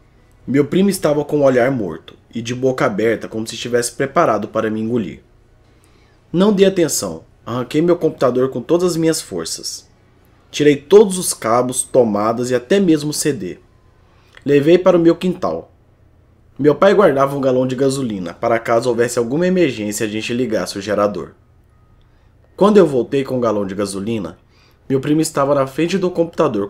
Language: Portuguese